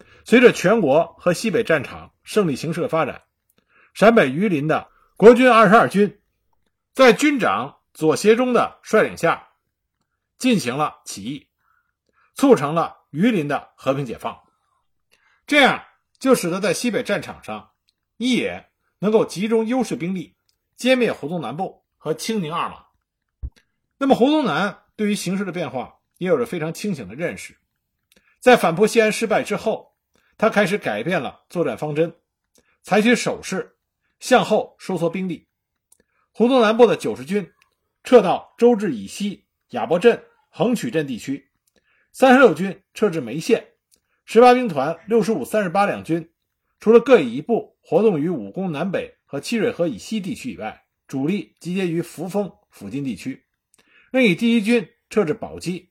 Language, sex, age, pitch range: Chinese, male, 50-69, 175-240 Hz